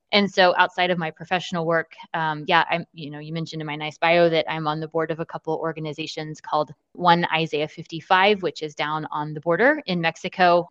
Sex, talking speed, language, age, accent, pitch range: female, 220 wpm, English, 20-39, American, 155-185 Hz